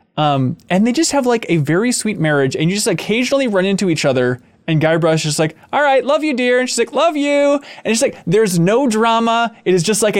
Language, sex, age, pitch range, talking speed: English, male, 20-39, 145-220 Hz, 255 wpm